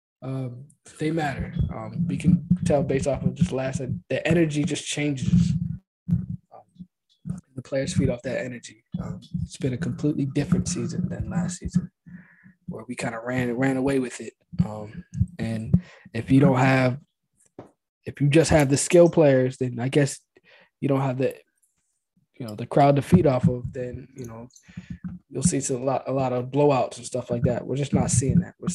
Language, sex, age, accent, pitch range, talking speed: English, male, 20-39, American, 130-170 Hz, 190 wpm